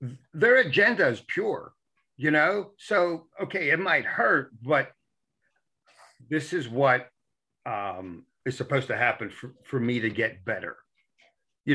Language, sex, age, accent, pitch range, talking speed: English, male, 60-79, American, 130-170 Hz, 140 wpm